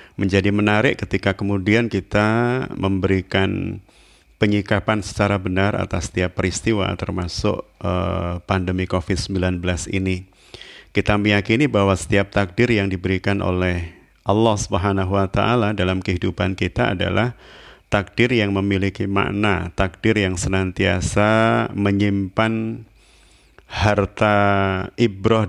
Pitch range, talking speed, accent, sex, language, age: 95-105 Hz, 100 wpm, native, male, Indonesian, 30-49